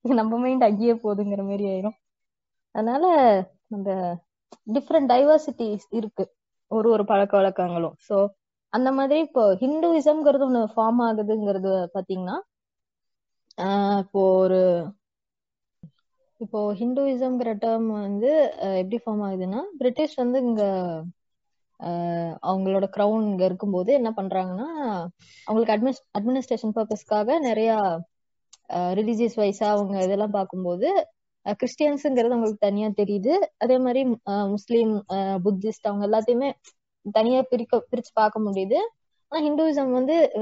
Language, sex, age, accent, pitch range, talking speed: Tamil, female, 20-39, native, 190-250 Hz, 65 wpm